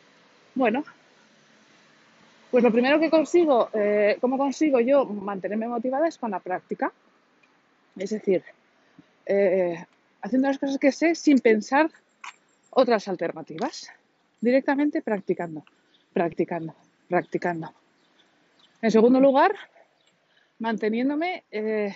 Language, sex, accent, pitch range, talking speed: Spanish, female, Spanish, 205-280 Hz, 100 wpm